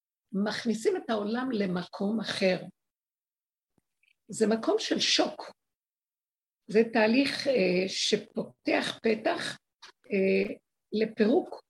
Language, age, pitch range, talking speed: Hebrew, 50-69, 190-240 Hz, 80 wpm